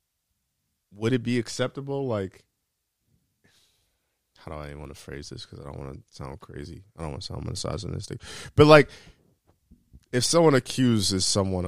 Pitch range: 85-115 Hz